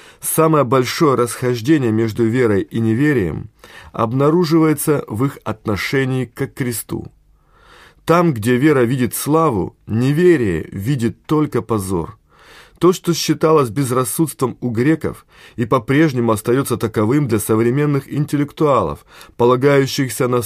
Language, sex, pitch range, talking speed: Russian, male, 115-150 Hz, 110 wpm